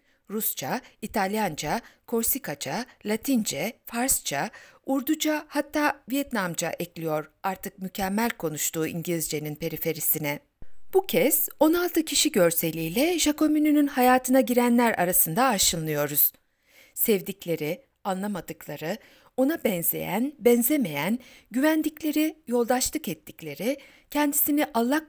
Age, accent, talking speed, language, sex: 60-79, native, 80 wpm, Turkish, female